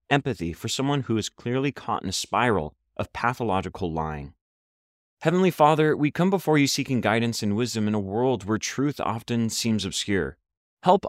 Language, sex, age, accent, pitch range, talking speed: English, male, 30-49, American, 95-135 Hz, 175 wpm